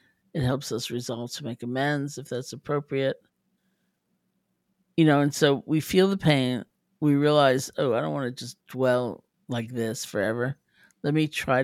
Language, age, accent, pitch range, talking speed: English, 50-69, American, 125-165 Hz, 170 wpm